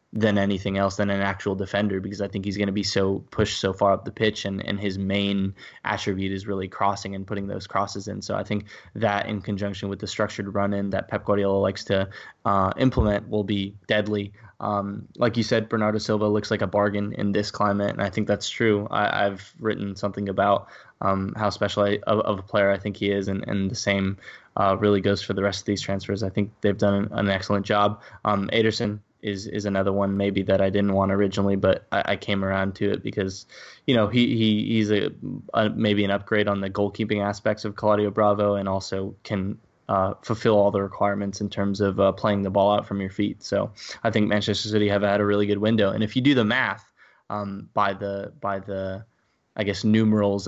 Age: 10-29